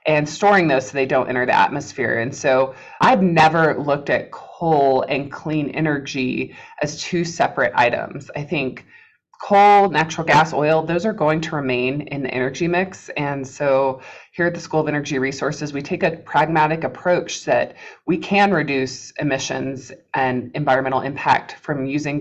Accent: American